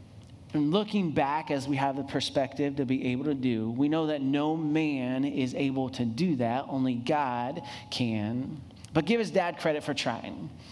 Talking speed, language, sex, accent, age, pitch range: 185 wpm, English, male, American, 30-49, 120-165 Hz